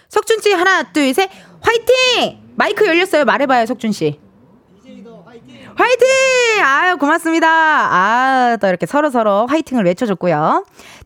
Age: 20-39